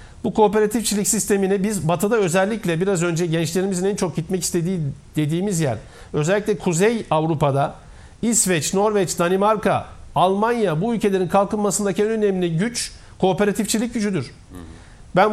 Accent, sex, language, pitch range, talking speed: native, male, Turkish, 175-215 Hz, 120 wpm